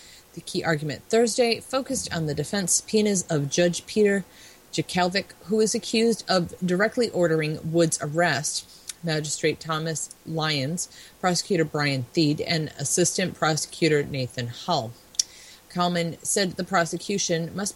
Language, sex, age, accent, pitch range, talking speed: English, female, 30-49, American, 150-185 Hz, 125 wpm